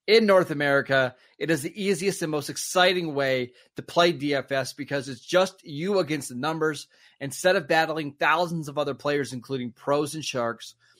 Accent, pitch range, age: American, 135-165 Hz, 20-39